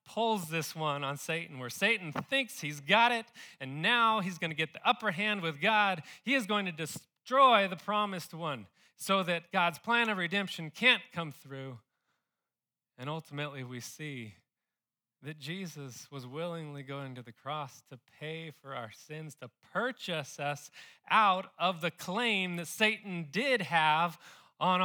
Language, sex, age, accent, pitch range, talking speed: English, male, 30-49, American, 125-175 Hz, 165 wpm